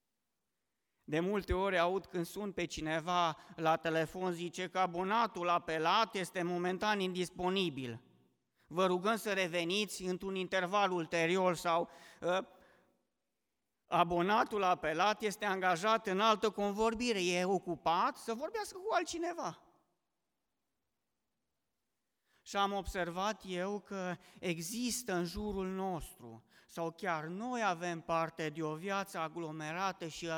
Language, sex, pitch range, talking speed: Romanian, male, 170-215 Hz, 115 wpm